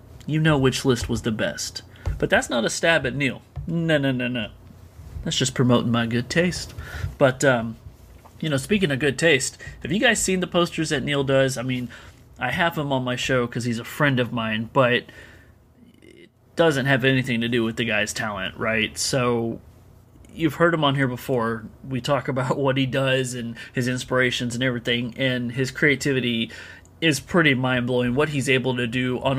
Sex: male